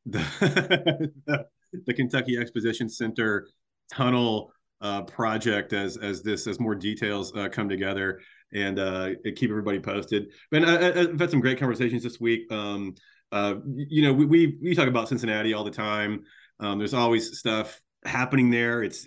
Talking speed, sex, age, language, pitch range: 165 wpm, male, 30-49, English, 100-120 Hz